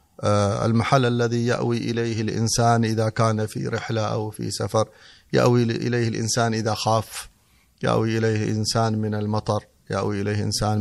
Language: Arabic